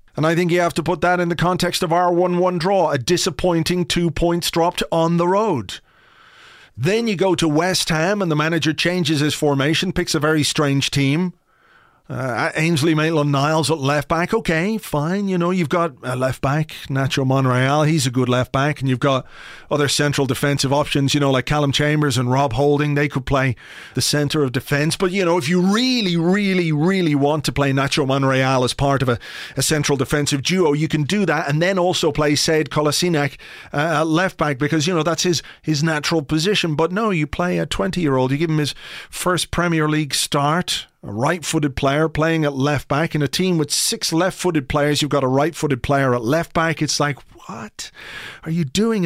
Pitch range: 145-175 Hz